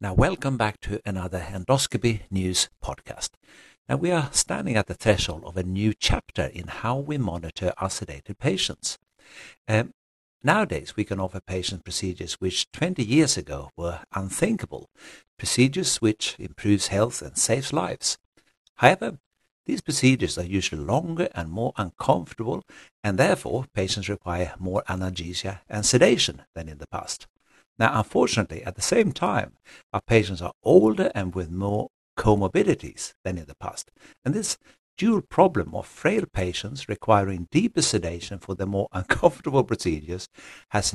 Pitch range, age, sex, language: 90-110 Hz, 60-79, male, English